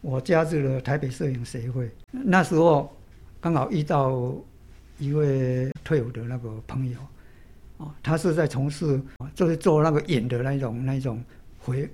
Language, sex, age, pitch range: Chinese, male, 60-79, 125-160 Hz